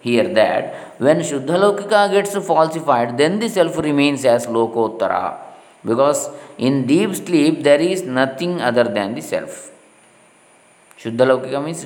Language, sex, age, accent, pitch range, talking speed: Kannada, male, 20-39, native, 130-175 Hz, 125 wpm